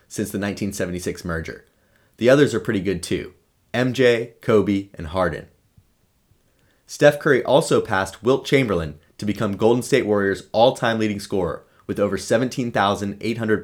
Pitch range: 90-120 Hz